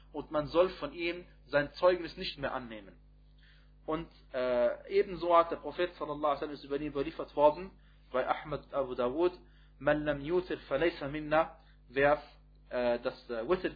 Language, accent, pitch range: German, German, 130-155 Hz